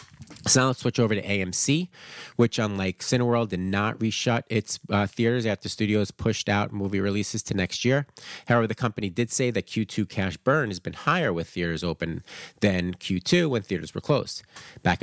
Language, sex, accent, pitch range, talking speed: English, male, American, 90-115 Hz, 190 wpm